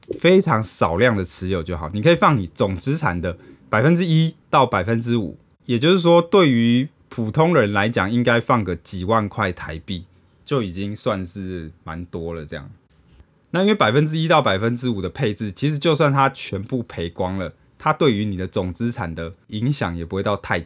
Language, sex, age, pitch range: Chinese, male, 20-39, 90-140 Hz